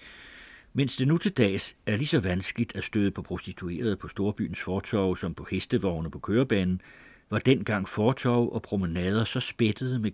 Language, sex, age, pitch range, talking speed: Danish, male, 60-79, 90-120 Hz, 170 wpm